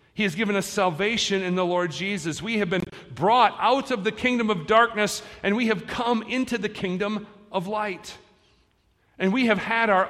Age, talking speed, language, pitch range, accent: 40-59, 195 wpm, English, 165-215 Hz, American